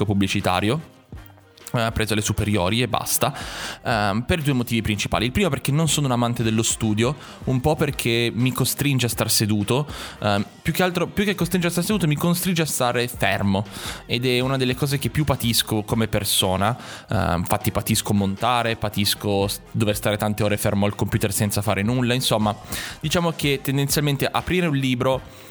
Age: 20-39